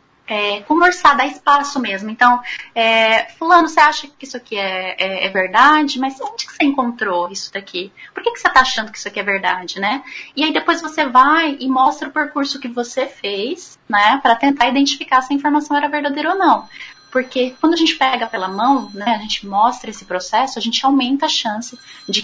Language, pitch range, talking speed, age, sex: Portuguese, 205-280 Hz, 210 wpm, 10-29, female